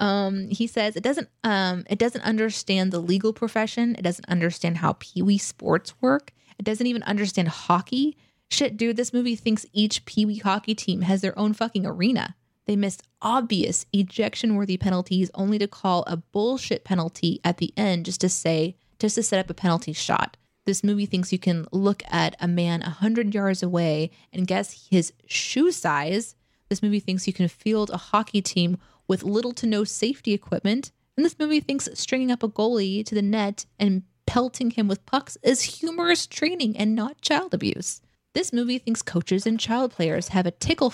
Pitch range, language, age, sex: 185-230 Hz, English, 20-39, female